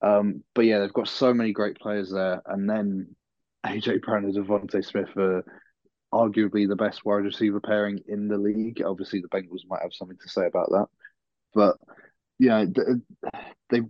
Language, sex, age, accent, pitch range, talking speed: English, male, 20-39, British, 100-120 Hz, 175 wpm